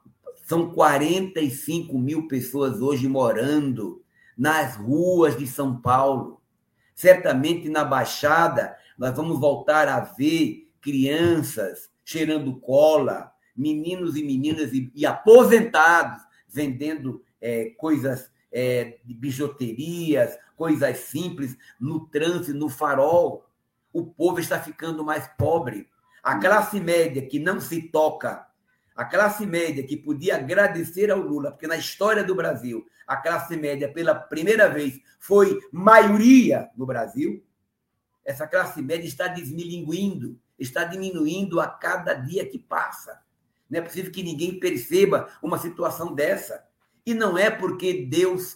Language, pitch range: Portuguese, 140-185 Hz